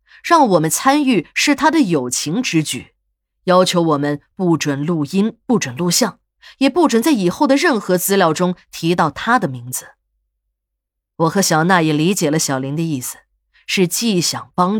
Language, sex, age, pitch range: Chinese, female, 20-39, 155-240 Hz